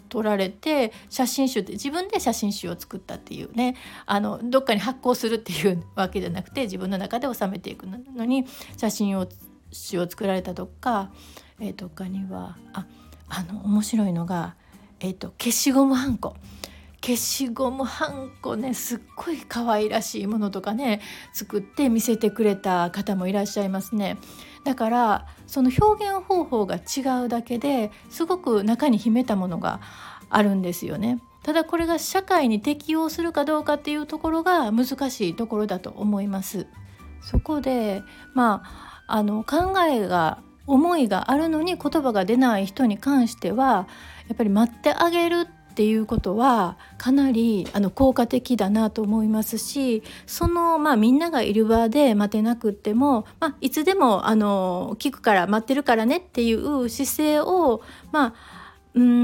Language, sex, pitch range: Japanese, female, 205-275 Hz